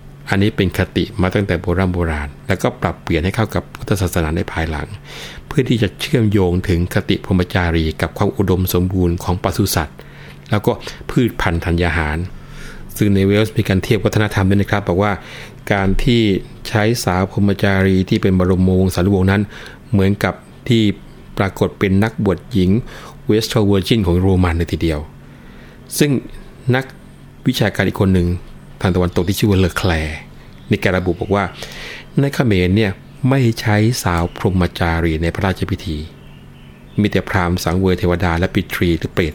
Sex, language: male, Thai